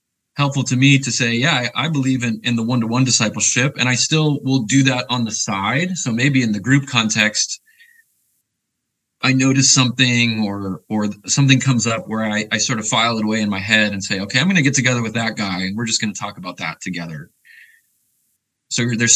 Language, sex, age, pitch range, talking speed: English, male, 20-39, 105-130 Hz, 215 wpm